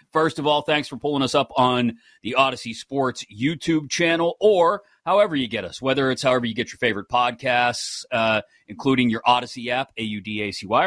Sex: male